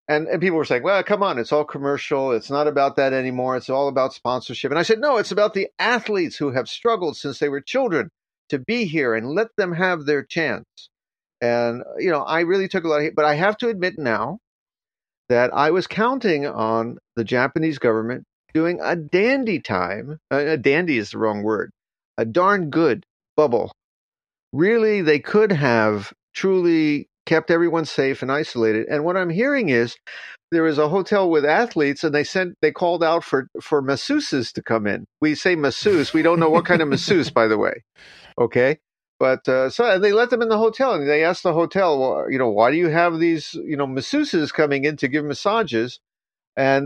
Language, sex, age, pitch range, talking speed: English, male, 50-69, 140-185 Hz, 205 wpm